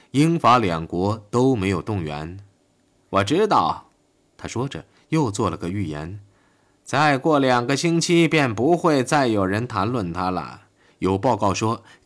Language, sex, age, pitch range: Chinese, male, 20-39, 95-140 Hz